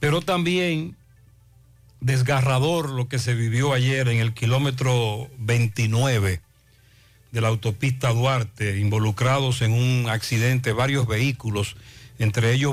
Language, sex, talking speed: Spanish, male, 115 wpm